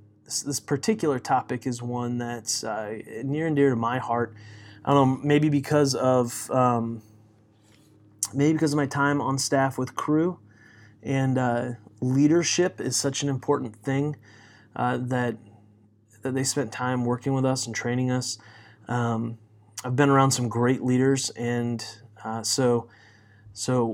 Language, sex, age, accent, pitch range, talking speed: English, male, 30-49, American, 110-135 Hz, 150 wpm